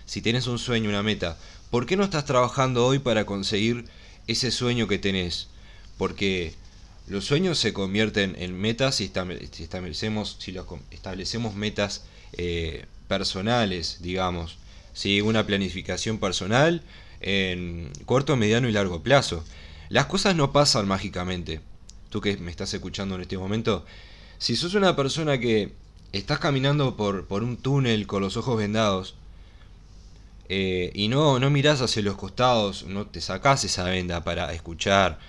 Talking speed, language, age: 150 wpm, Spanish, 20-39